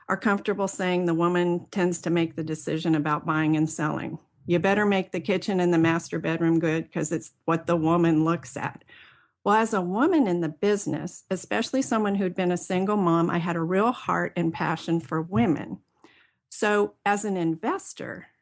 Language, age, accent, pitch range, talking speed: English, 50-69, American, 165-200 Hz, 190 wpm